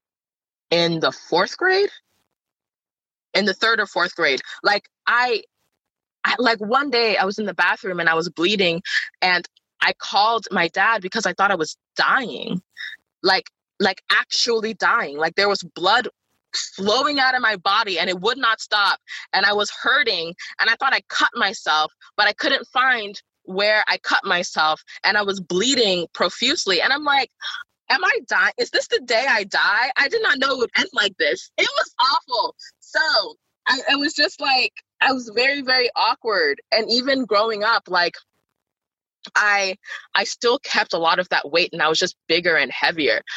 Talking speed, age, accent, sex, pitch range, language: 185 wpm, 20-39, American, female, 180-275 Hz, English